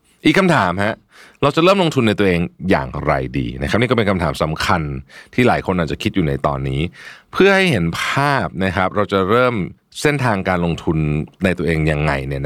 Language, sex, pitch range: Thai, male, 80-120 Hz